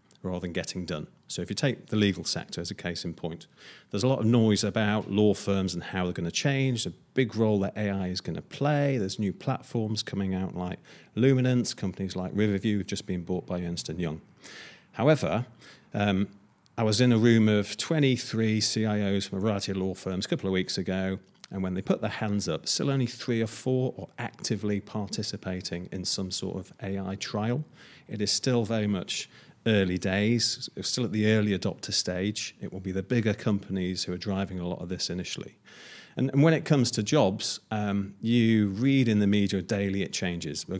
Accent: British